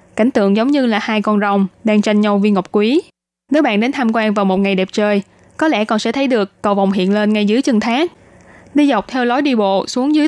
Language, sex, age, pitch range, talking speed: Vietnamese, female, 20-39, 205-255 Hz, 270 wpm